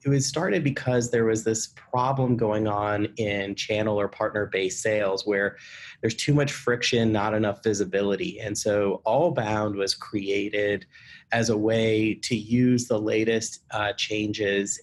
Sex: male